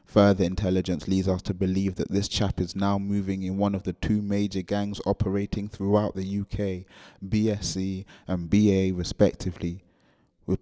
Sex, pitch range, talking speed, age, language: male, 95-105 Hz, 160 wpm, 20-39, English